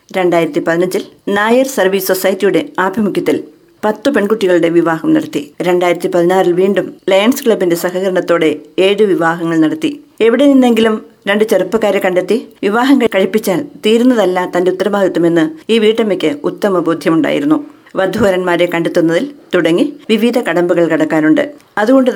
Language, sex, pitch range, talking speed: Malayalam, female, 175-230 Hz, 105 wpm